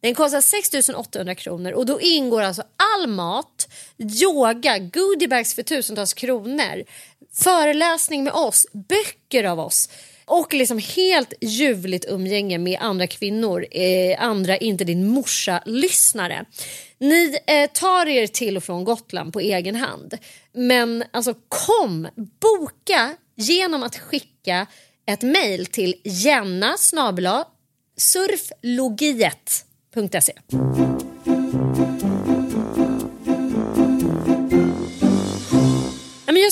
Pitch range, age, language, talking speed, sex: 165-270 Hz, 30-49, Swedish, 90 wpm, female